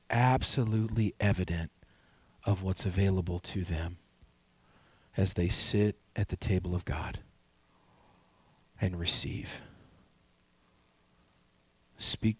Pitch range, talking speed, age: 85-115 Hz, 85 wpm, 40-59